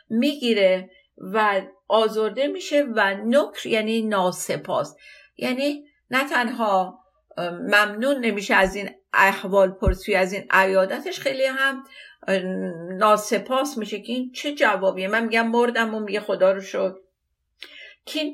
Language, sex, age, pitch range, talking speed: Persian, female, 50-69, 200-265 Hz, 120 wpm